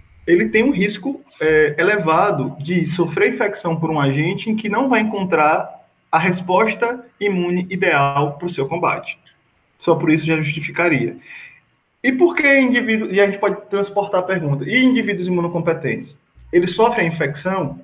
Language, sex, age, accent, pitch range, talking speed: Portuguese, male, 20-39, Brazilian, 150-190 Hz, 160 wpm